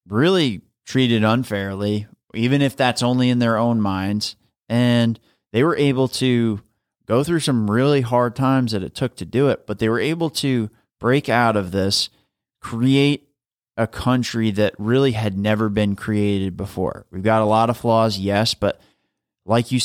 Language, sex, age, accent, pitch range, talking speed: English, male, 30-49, American, 105-125 Hz, 170 wpm